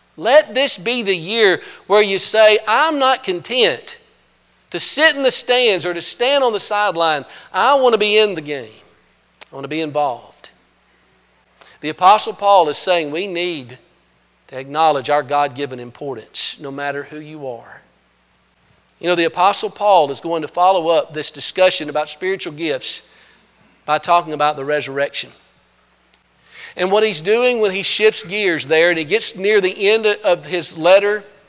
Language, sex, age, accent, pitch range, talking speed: English, male, 50-69, American, 155-215 Hz, 170 wpm